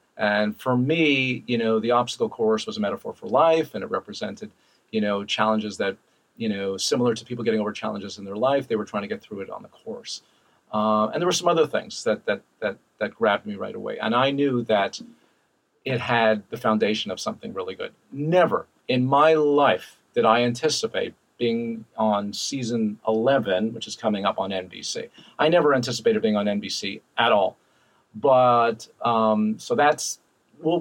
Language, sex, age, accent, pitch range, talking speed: English, male, 40-59, American, 110-135 Hz, 190 wpm